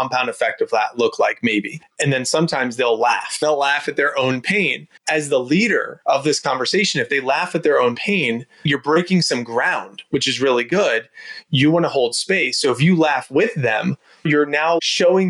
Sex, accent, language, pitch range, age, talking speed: male, American, English, 130-180 Hz, 30-49, 210 wpm